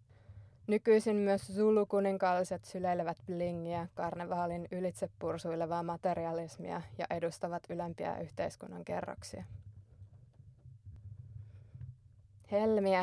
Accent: native